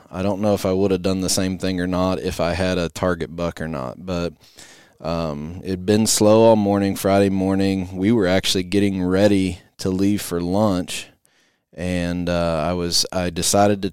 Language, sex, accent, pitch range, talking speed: English, male, American, 85-100 Hz, 200 wpm